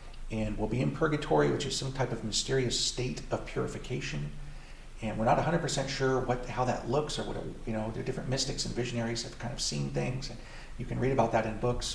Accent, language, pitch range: American, English, 110-135 Hz